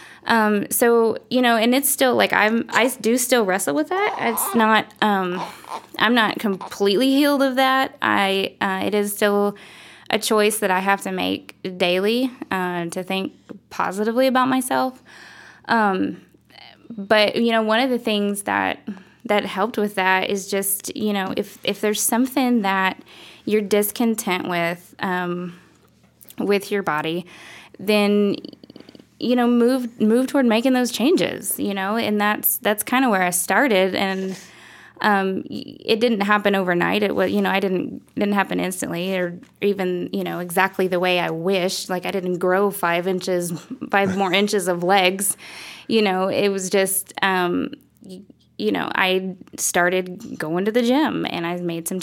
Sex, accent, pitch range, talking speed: female, American, 185-230 Hz, 165 wpm